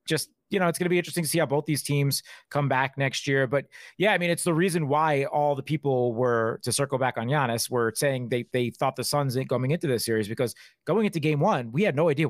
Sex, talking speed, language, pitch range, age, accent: male, 275 wpm, English, 120-150 Hz, 30-49, American